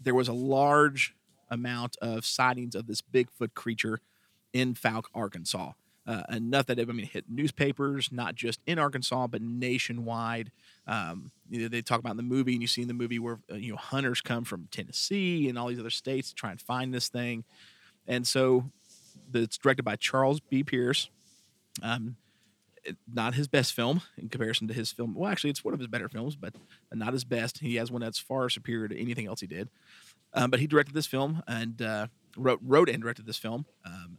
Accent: American